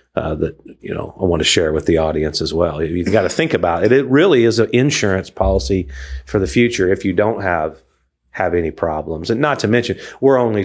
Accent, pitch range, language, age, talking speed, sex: American, 85-105 Hz, English, 40-59, 230 wpm, male